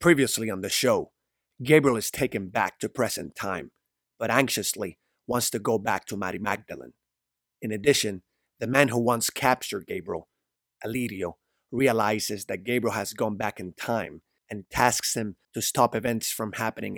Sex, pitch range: male, 105-125 Hz